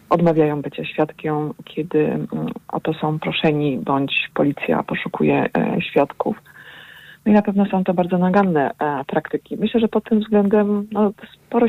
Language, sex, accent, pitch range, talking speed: Polish, female, native, 155-195 Hz, 140 wpm